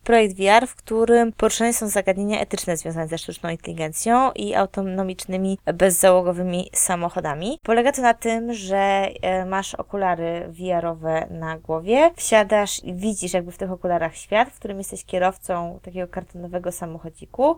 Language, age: Polish, 20-39